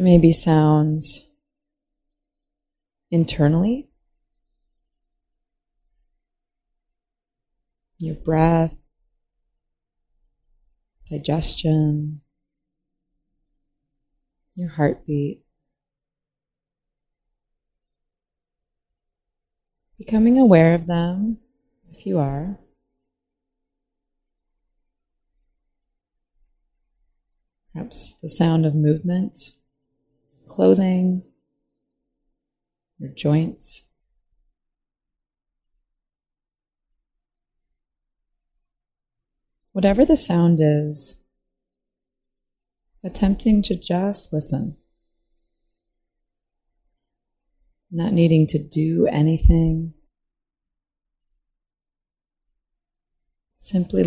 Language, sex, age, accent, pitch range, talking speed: English, female, 30-49, American, 145-190 Hz, 45 wpm